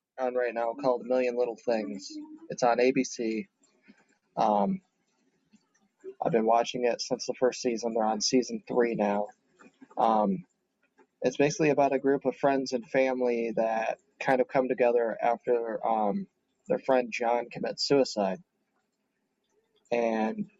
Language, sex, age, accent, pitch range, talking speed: English, male, 20-39, American, 115-130 Hz, 140 wpm